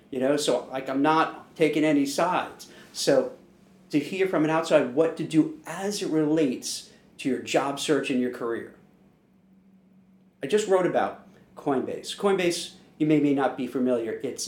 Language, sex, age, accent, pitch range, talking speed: English, male, 50-69, American, 135-165 Hz, 170 wpm